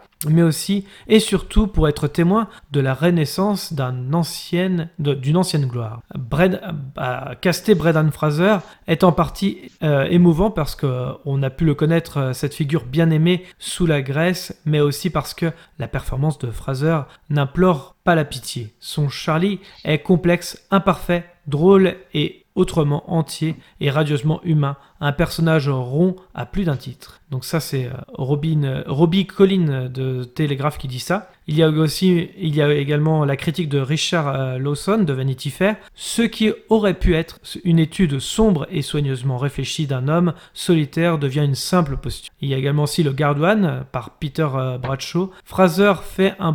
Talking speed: 165 wpm